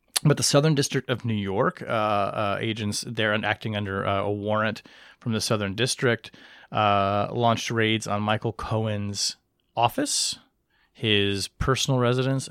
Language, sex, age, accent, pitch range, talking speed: English, male, 30-49, American, 100-125 Hz, 150 wpm